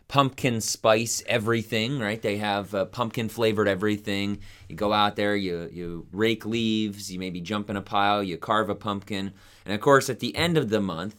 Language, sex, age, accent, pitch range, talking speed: English, male, 30-49, American, 95-110 Hz, 200 wpm